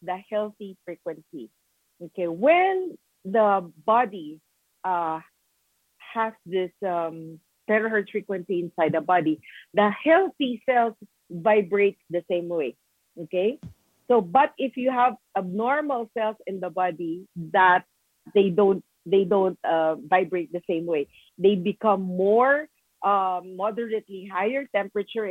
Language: English